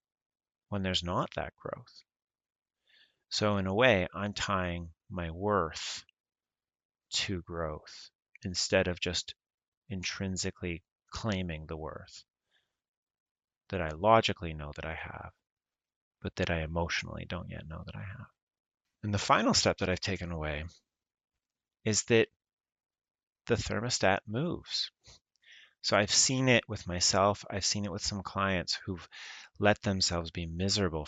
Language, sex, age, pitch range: English, male, 30-49, 90-105 Hz